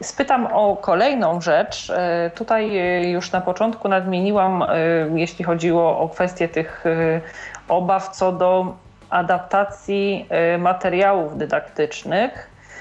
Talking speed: 95 wpm